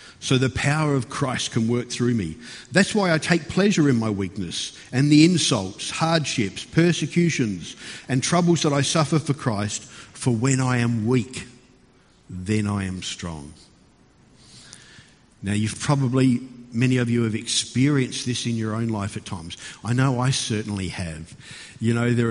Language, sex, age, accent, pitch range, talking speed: English, male, 50-69, Australian, 105-135 Hz, 165 wpm